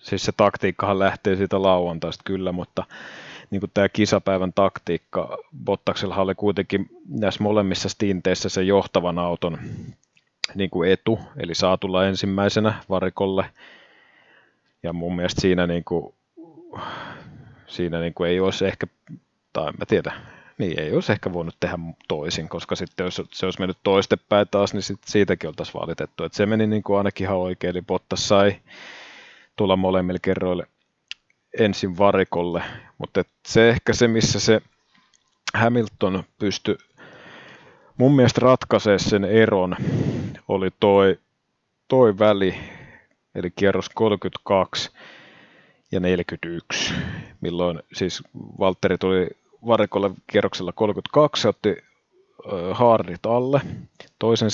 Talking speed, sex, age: 125 wpm, male, 30-49